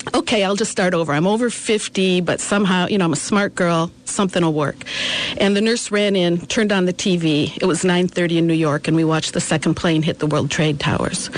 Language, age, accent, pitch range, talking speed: English, 50-69, American, 170-200 Hz, 235 wpm